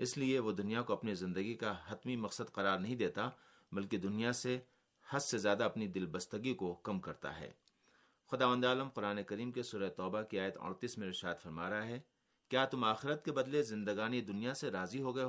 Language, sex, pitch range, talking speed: Urdu, male, 100-125 Hz, 205 wpm